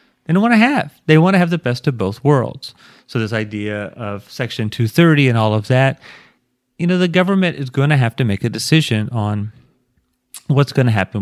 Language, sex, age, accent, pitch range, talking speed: English, male, 30-49, American, 105-135 Hz, 220 wpm